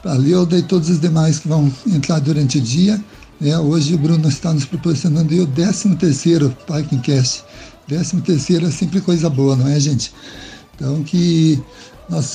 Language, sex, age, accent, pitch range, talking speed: Portuguese, male, 60-79, Brazilian, 145-175 Hz, 165 wpm